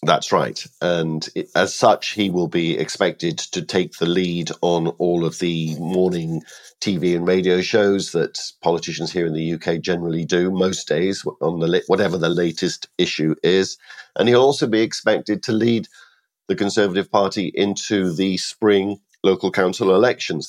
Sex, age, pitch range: male, 50-69, 80-95 Hz